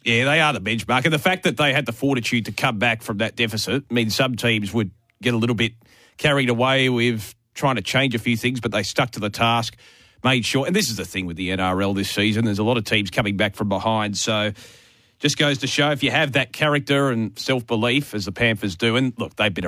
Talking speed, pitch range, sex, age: 255 wpm, 105-125 Hz, male, 30-49